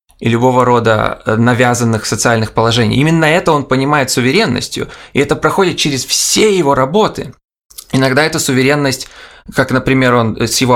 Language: Russian